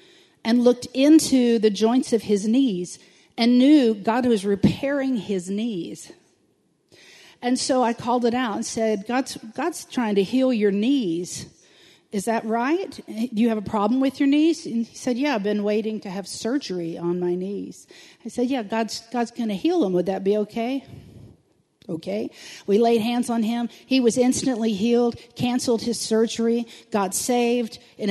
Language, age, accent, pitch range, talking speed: English, 50-69, American, 210-260 Hz, 175 wpm